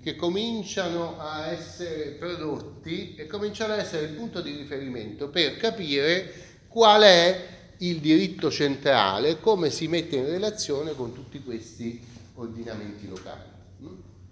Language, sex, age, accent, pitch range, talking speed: Italian, male, 40-59, native, 110-155 Hz, 125 wpm